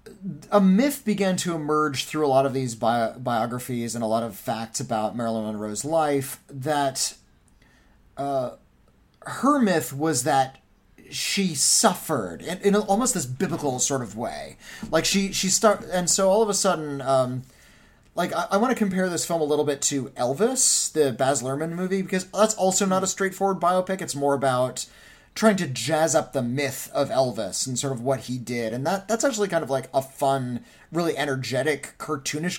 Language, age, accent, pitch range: English, 20-39, American, 130-190 Hz